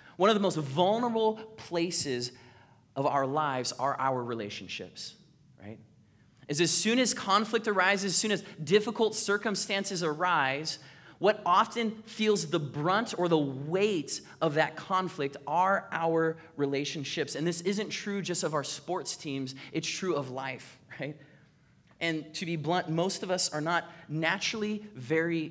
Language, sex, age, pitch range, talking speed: English, male, 20-39, 120-165 Hz, 150 wpm